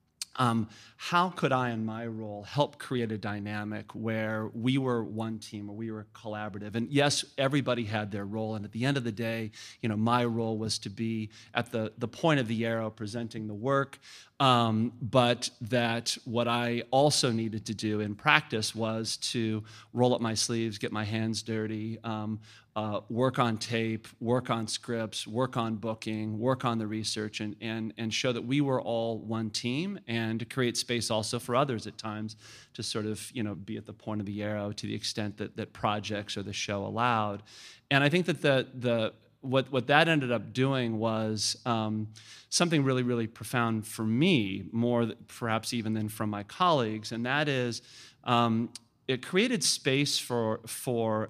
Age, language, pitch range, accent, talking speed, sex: 40-59, English, 110-125 Hz, American, 190 wpm, male